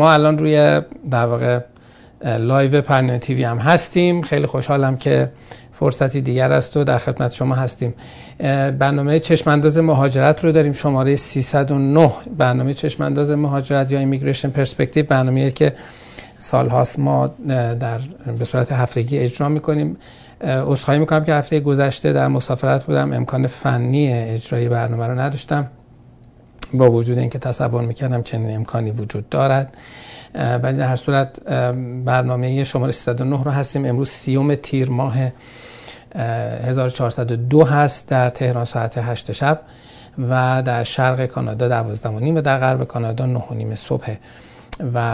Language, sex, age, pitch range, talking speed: Persian, male, 50-69, 120-145 Hz, 140 wpm